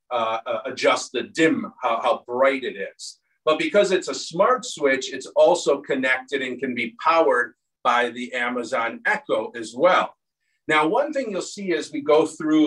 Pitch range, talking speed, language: 135-180 Hz, 175 wpm, English